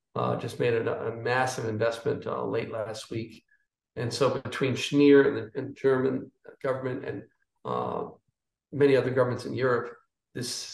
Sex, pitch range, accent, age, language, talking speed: male, 120-145 Hz, American, 50-69, English, 160 wpm